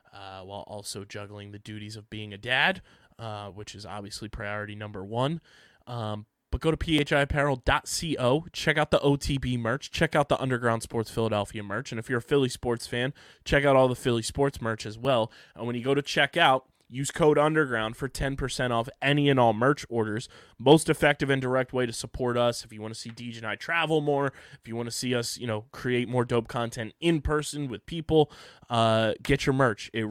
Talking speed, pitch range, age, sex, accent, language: 215 wpm, 110-140 Hz, 20-39, male, American, English